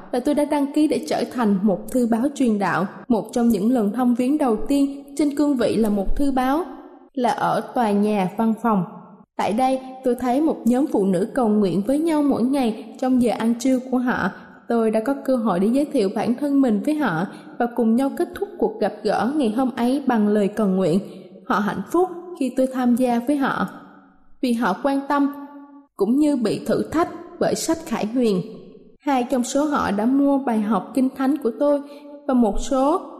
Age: 20-39